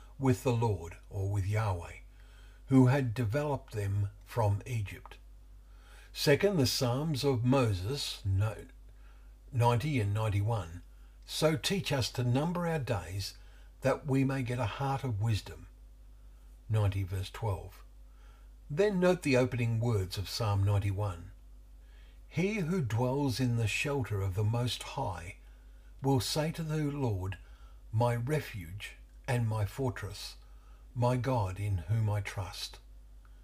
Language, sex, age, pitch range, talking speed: English, male, 60-79, 90-125 Hz, 130 wpm